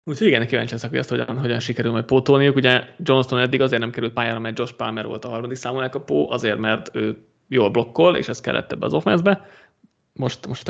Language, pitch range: Hungarian, 115-140 Hz